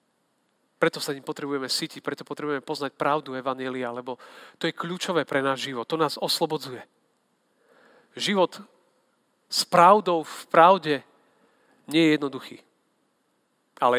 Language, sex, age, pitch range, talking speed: Slovak, male, 40-59, 145-190 Hz, 125 wpm